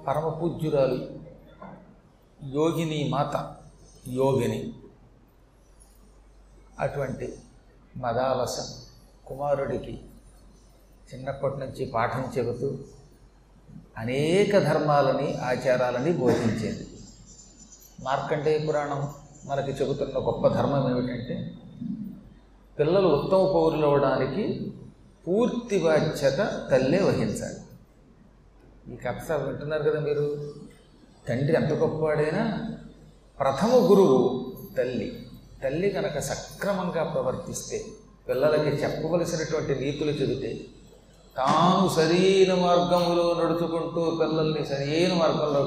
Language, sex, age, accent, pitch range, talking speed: Telugu, male, 40-59, native, 140-175 Hz, 75 wpm